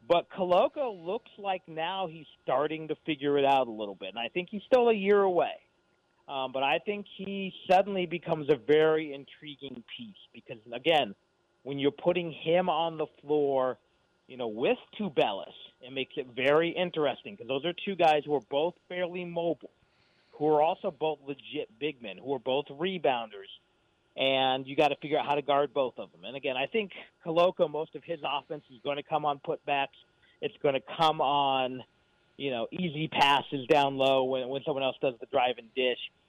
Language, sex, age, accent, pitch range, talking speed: English, male, 40-59, American, 135-170 Hz, 195 wpm